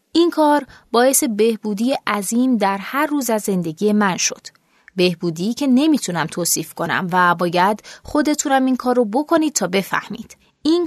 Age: 20-39